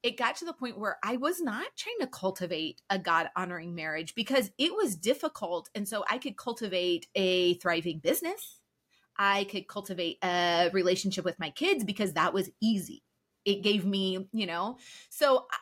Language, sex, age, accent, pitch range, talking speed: English, female, 30-49, American, 195-270 Hz, 175 wpm